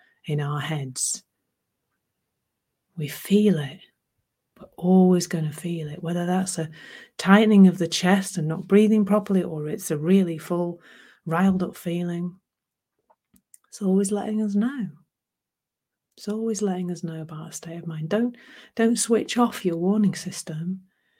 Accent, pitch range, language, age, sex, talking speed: British, 170-200 Hz, English, 30-49, female, 150 wpm